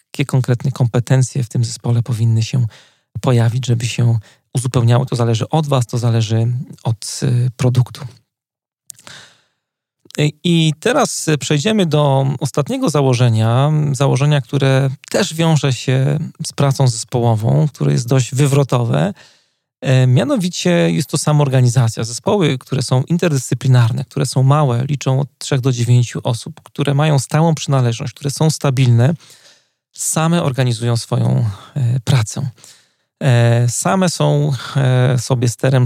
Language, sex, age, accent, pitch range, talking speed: Polish, male, 40-59, native, 120-145 Hz, 120 wpm